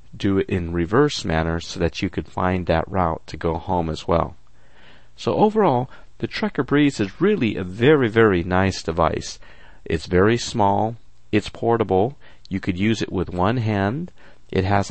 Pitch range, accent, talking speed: 90-115 Hz, American, 175 wpm